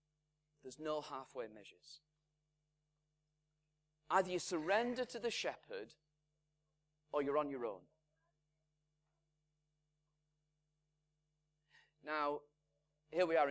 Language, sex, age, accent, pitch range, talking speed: English, male, 30-49, British, 150-210 Hz, 85 wpm